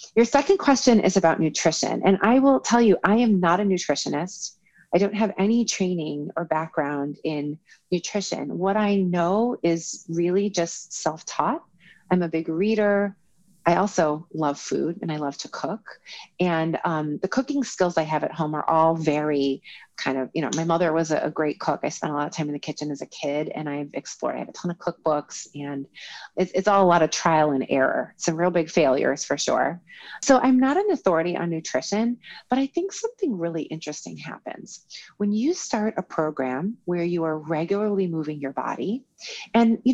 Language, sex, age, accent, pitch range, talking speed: English, female, 30-49, American, 155-215 Hz, 200 wpm